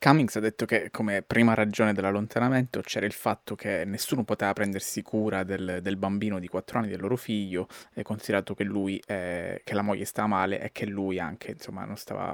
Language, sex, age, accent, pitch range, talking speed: Italian, male, 20-39, native, 105-125 Hz, 205 wpm